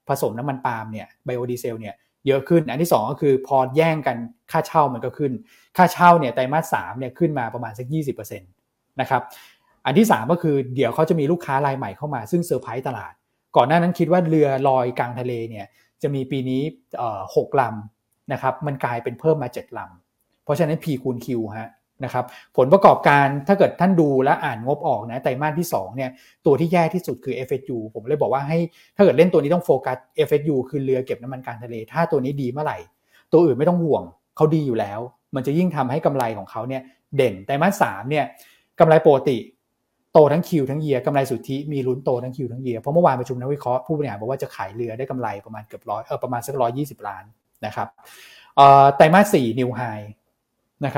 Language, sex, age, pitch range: Thai, male, 20-39, 125-155 Hz